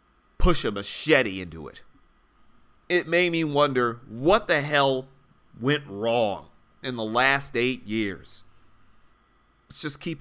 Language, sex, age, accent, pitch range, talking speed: English, male, 30-49, American, 95-140 Hz, 130 wpm